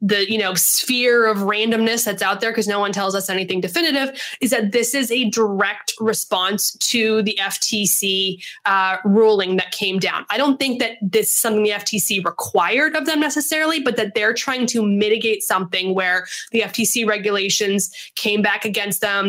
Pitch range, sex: 205-255 Hz, female